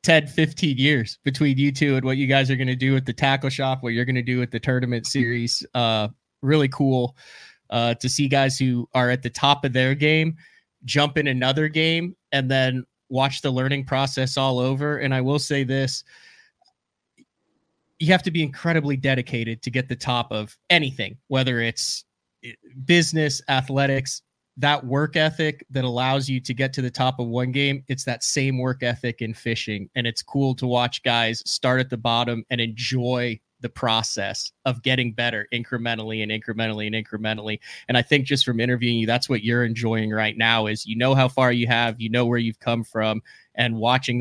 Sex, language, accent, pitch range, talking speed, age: male, English, American, 115-135 Hz, 200 wpm, 20-39